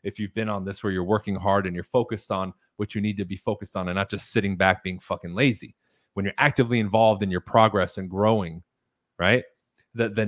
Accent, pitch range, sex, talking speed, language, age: American, 100-125 Hz, male, 235 wpm, English, 30-49